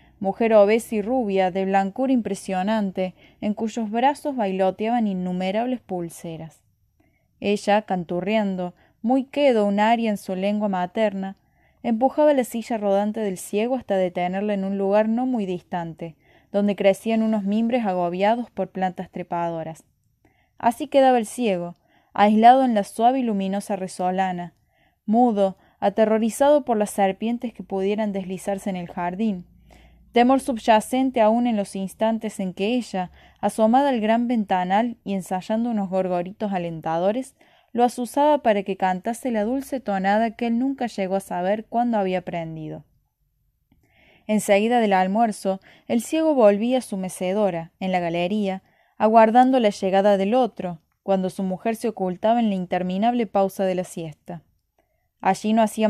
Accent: Argentinian